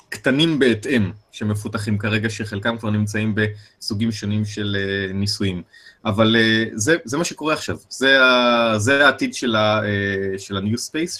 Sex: male